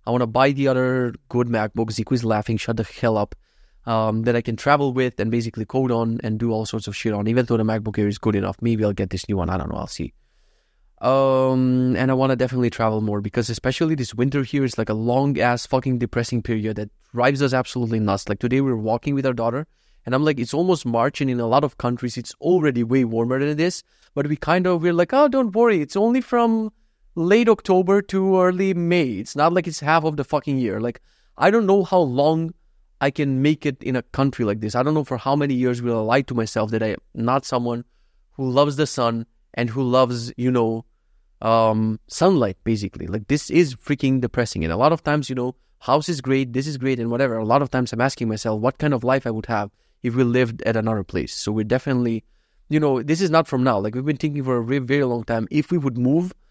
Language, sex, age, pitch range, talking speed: English, male, 20-39, 115-145 Hz, 250 wpm